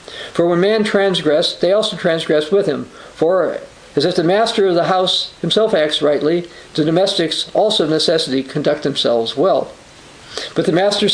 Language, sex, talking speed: English, male, 160 wpm